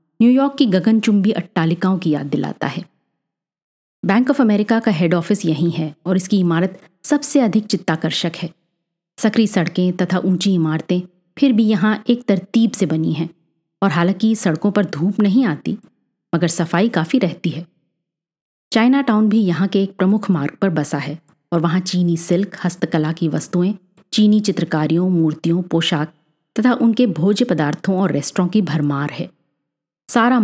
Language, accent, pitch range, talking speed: Hindi, native, 165-210 Hz, 160 wpm